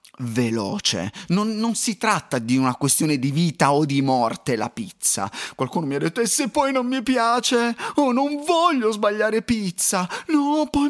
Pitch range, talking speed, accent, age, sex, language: 150-250 Hz, 175 wpm, native, 30-49, male, Italian